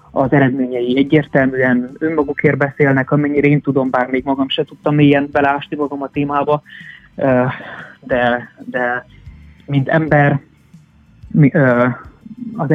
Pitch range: 125-145 Hz